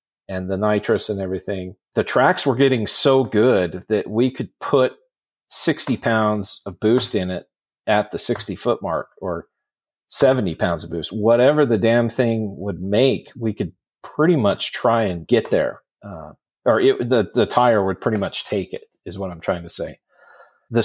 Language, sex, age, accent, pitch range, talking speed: English, male, 40-59, American, 100-115 Hz, 180 wpm